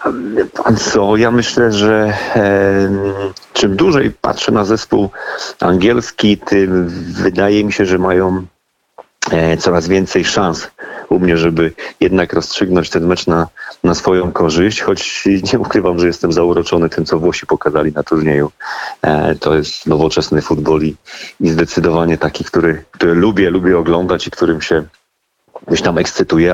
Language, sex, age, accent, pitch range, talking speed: Polish, male, 40-59, native, 80-95 Hz, 140 wpm